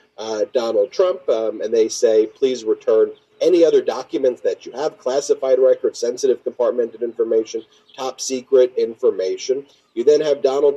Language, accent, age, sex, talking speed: English, American, 40-59, male, 150 wpm